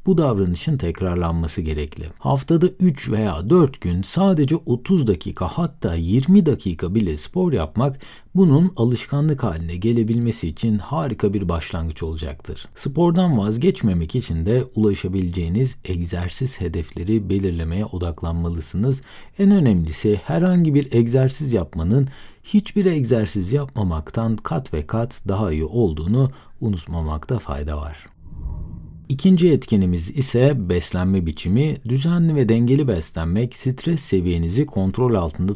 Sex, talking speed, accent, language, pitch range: male, 115 wpm, native, Turkish, 85-135 Hz